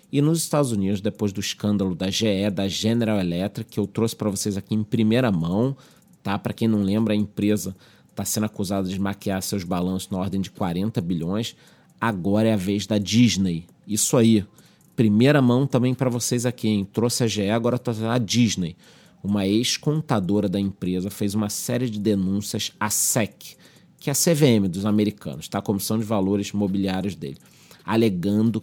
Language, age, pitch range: Portuguese, 30-49, 100-120 Hz